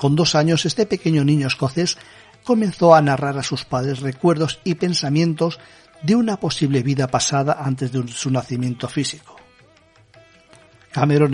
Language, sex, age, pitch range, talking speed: Spanish, male, 50-69, 135-170 Hz, 145 wpm